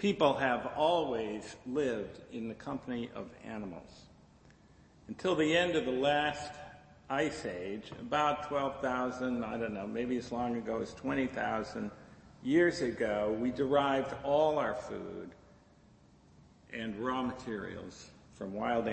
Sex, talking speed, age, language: male, 125 wpm, 50-69, English